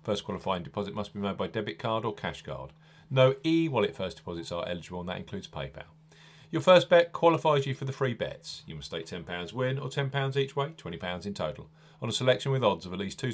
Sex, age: male, 40-59